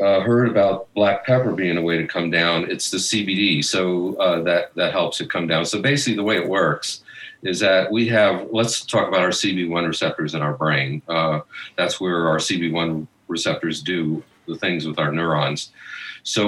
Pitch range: 85-110 Hz